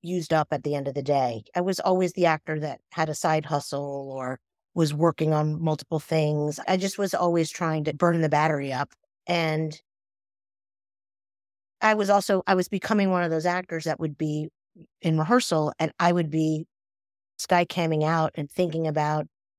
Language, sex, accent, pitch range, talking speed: English, female, American, 145-175 Hz, 185 wpm